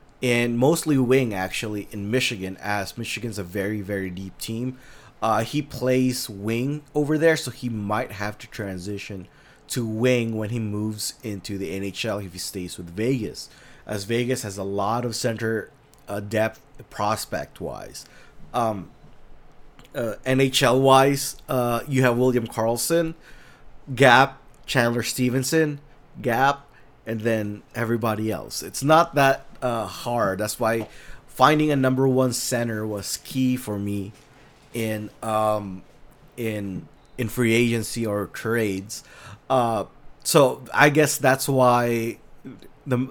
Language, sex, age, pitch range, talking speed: English, male, 20-39, 110-135 Hz, 135 wpm